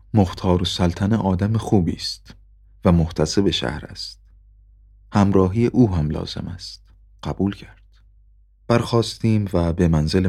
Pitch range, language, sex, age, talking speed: 85-105 Hz, Persian, male, 30-49, 115 wpm